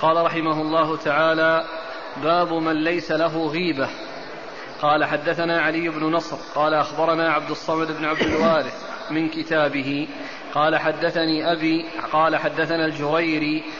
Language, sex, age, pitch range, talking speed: Arabic, male, 20-39, 150-165 Hz, 125 wpm